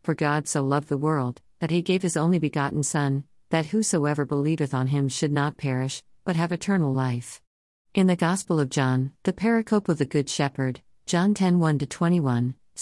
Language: Malayalam